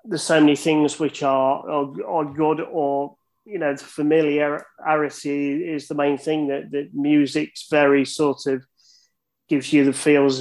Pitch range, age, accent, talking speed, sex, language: 140-155 Hz, 30-49, British, 160 wpm, male, English